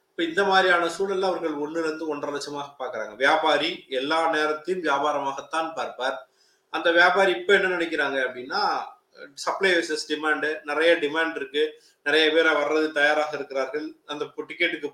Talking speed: 135 wpm